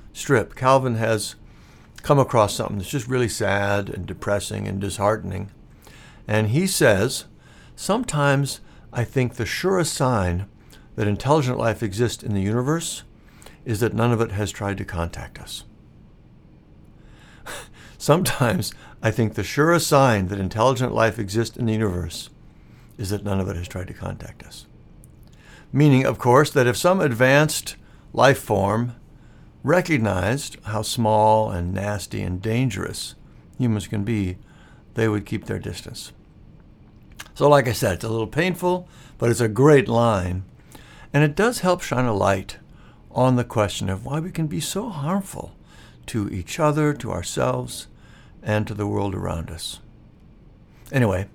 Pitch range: 105-140 Hz